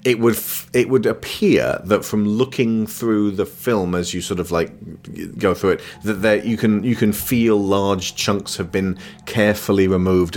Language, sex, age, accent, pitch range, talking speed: English, male, 30-49, British, 90-110 Hz, 190 wpm